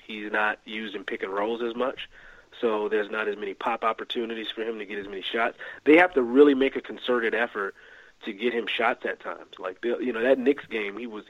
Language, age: English, 30-49